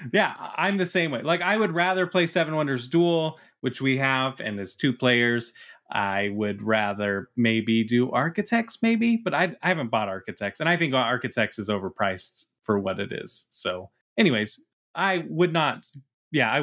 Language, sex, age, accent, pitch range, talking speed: English, male, 20-39, American, 120-165 Hz, 180 wpm